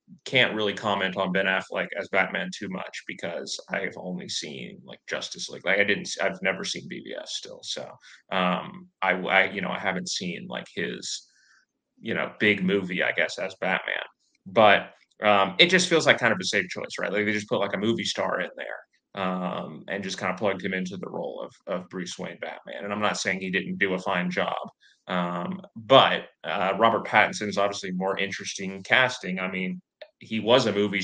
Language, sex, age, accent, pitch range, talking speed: English, male, 20-39, American, 90-100 Hz, 210 wpm